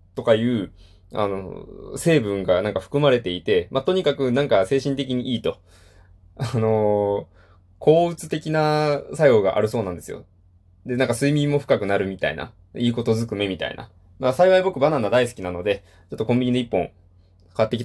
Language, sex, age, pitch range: Japanese, male, 20-39, 90-120 Hz